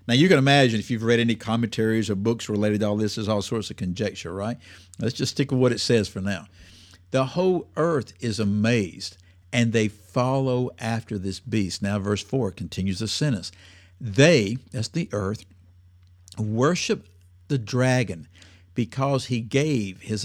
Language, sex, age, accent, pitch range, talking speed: English, male, 60-79, American, 95-140 Hz, 170 wpm